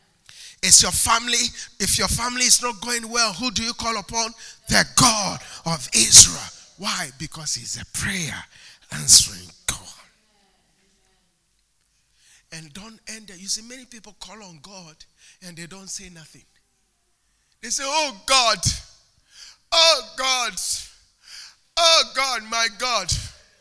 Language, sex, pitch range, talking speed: English, male, 210-275 Hz, 130 wpm